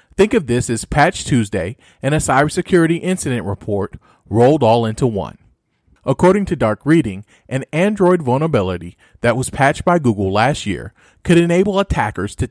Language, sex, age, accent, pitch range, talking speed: English, male, 40-59, American, 105-160 Hz, 160 wpm